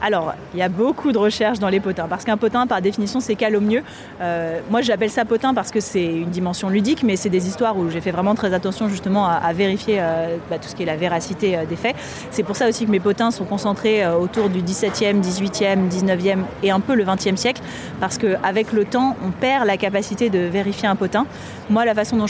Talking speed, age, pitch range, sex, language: 245 wpm, 30-49, 185-225 Hz, female, French